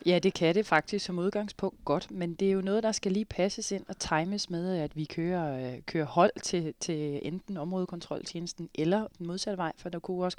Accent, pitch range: native, 165-195 Hz